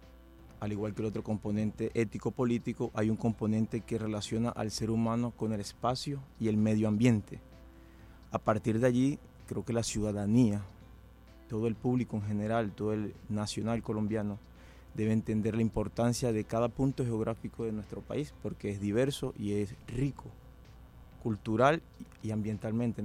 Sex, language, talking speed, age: male, Spanish, 155 wpm, 30-49